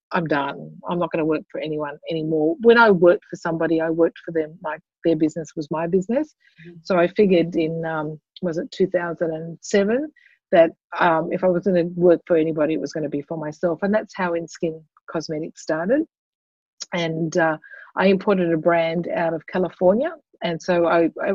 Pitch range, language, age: 160-185 Hz, English, 50-69